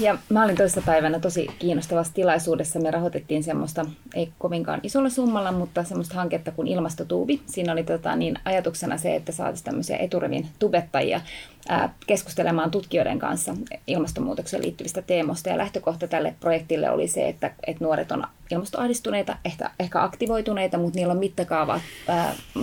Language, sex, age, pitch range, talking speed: Finnish, female, 20-39, 165-200 Hz, 140 wpm